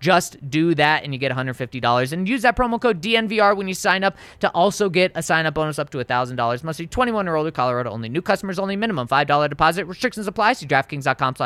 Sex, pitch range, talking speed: male, 140-195 Hz, 225 wpm